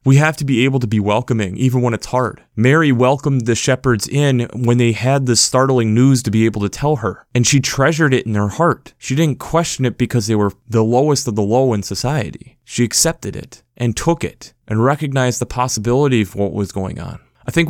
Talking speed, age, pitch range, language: 225 wpm, 30-49, 110-135 Hz, English